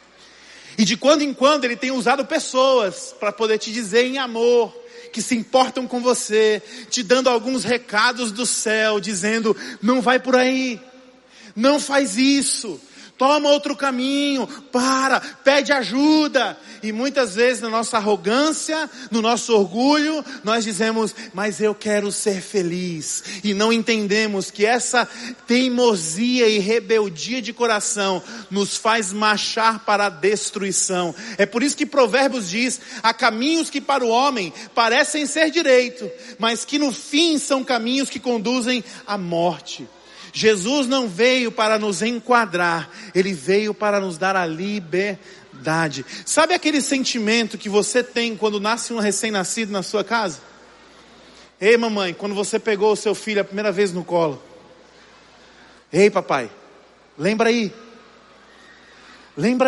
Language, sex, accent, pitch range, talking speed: Spanish, male, Brazilian, 210-255 Hz, 140 wpm